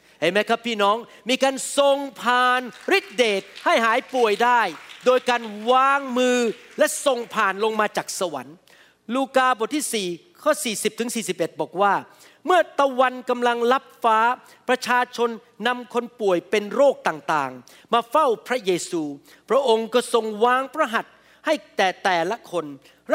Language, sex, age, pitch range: Thai, male, 40-59, 210-270 Hz